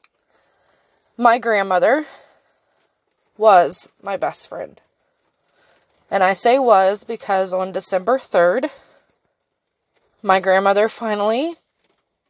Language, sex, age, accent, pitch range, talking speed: English, female, 20-39, American, 210-260 Hz, 85 wpm